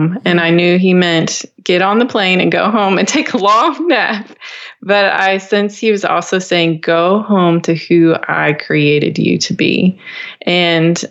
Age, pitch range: 20-39, 170-205 Hz